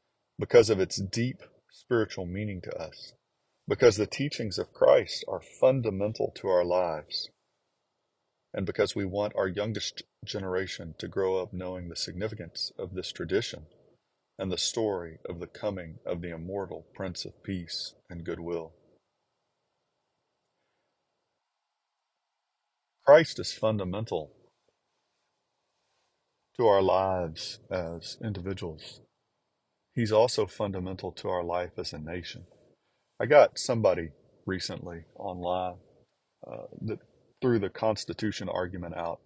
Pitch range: 90-110 Hz